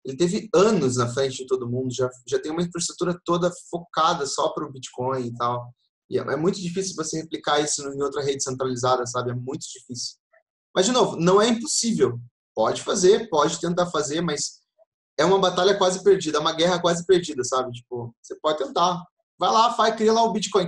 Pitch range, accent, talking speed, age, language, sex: 125-180 Hz, Brazilian, 205 wpm, 20-39, Portuguese, male